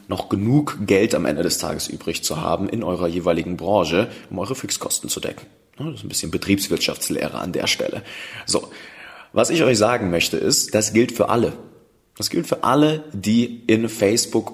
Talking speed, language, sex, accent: 185 wpm, German, male, German